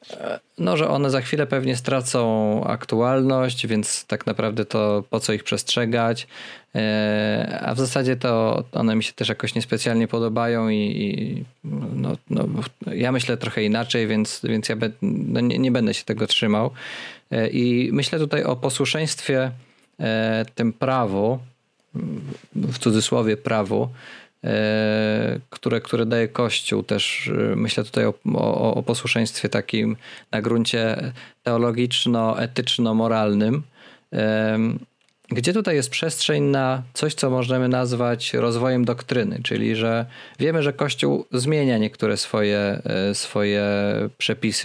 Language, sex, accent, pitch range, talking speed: Polish, male, native, 110-130 Hz, 120 wpm